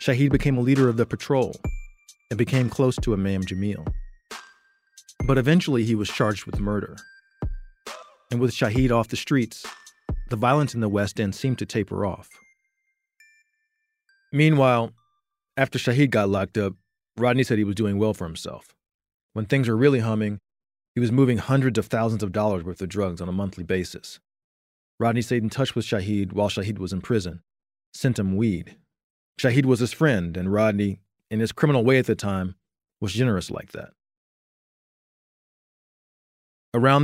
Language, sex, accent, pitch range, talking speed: English, male, American, 100-135 Hz, 165 wpm